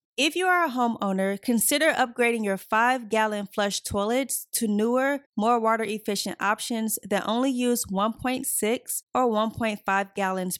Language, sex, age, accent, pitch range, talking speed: English, female, 20-39, American, 205-255 Hz, 140 wpm